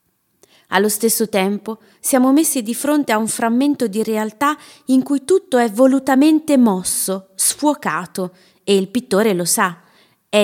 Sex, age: female, 20-39